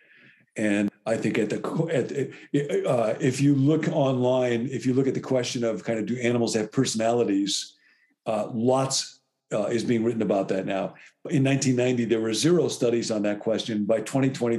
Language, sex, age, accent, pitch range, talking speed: English, male, 50-69, American, 105-130 Hz, 180 wpm